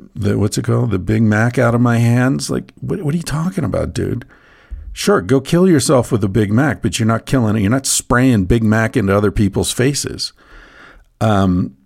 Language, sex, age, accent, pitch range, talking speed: English, male, 50-69, American, 90-115 Hz, 215 wpm